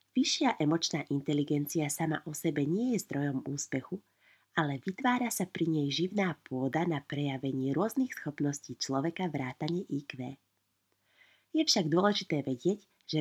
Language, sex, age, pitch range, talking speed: Slovak, female, 30-49, 145-195 Hz, 135 wpm